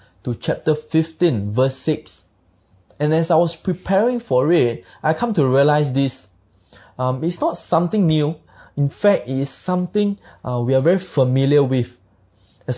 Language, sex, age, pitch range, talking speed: English, male, 20-39, 120-165 Hz, 160 wpm